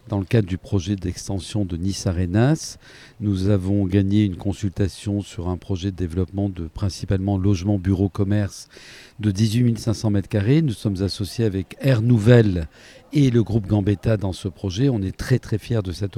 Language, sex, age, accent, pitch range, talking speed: French, male, 50-69, French, 100-120 Hz, 180 wpm